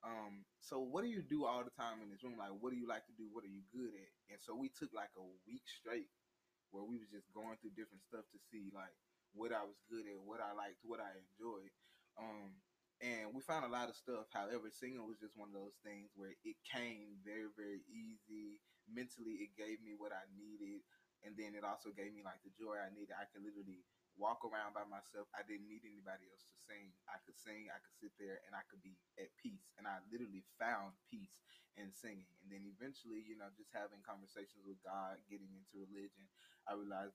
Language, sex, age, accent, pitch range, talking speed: English, male, 20-39, American, 100-120 Hz, 230 wpm